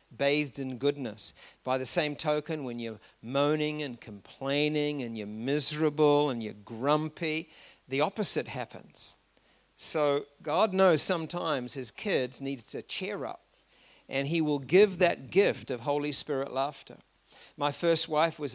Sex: male